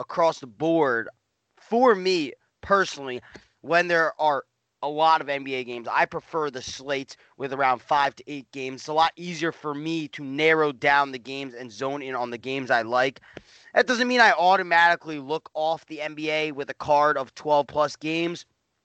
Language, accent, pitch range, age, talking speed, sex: English, American, 150-195 Hz, 30-49, 190 wpm, male